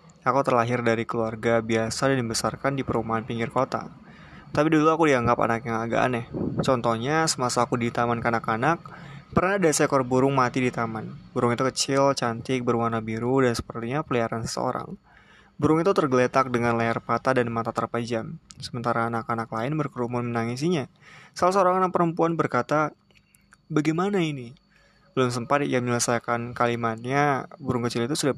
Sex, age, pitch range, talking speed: male, 20-39, 115-145 Hz, 150 wpm